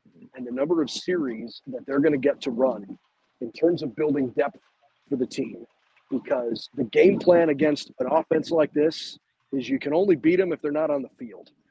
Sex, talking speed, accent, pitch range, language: male, 210 wpm, American, 140-165 Hz, English